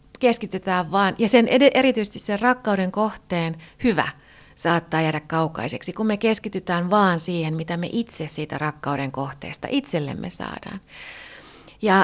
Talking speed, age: 125 wpm, 30-49